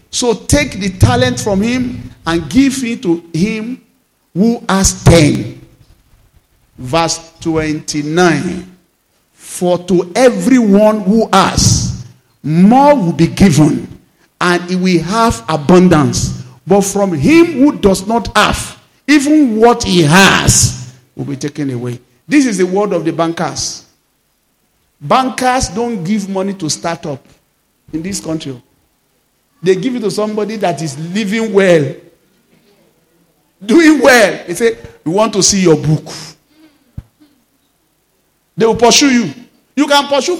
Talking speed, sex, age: 130 wpm, male, 50-69